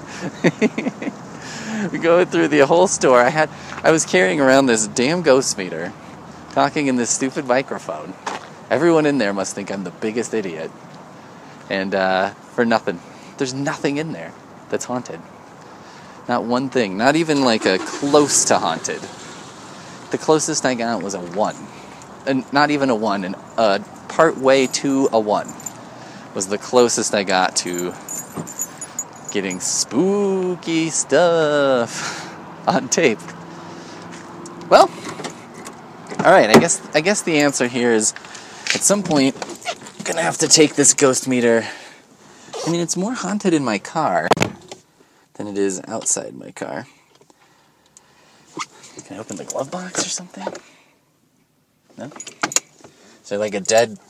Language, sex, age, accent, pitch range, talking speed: English, male, 20-39, American, 115-160 Hz, 145 wpm